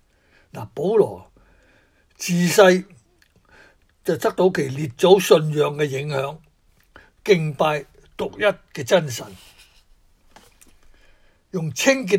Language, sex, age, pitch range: Chinese, male, 60-79, 140-190 Hz